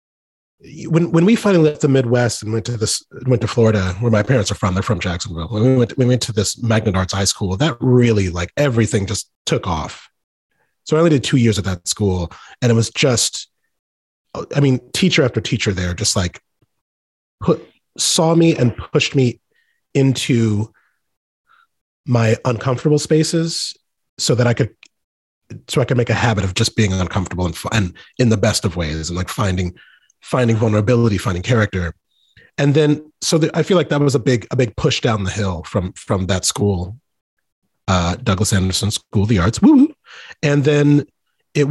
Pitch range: 100-135 Hz